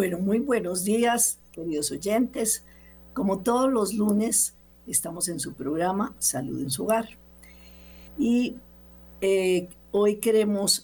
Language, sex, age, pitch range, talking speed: Spanish, female, 50-69, 150-200 Hz, 120 wpm